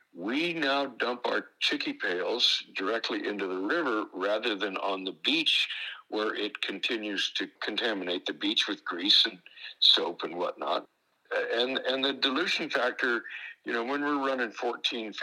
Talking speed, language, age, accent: 155 wpm, English, 60-79, American